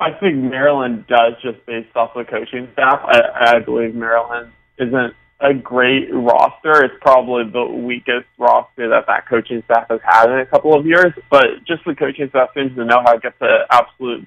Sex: male